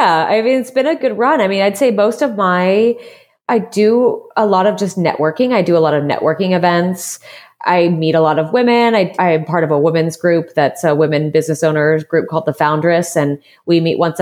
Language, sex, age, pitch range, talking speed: English, female, 20-39, 160-215 Hz, 230 wpm